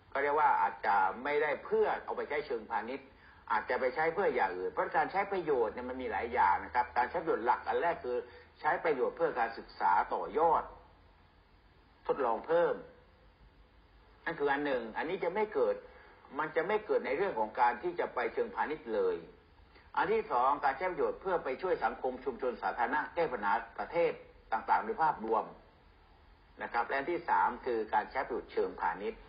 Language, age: English, 60-79